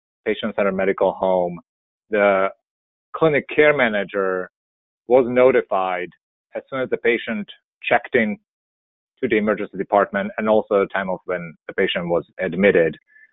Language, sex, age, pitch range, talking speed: English, male, 30-49, 95-120 Hz, 135 wpm